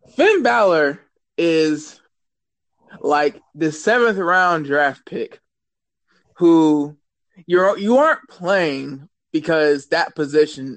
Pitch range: 155-250 Hz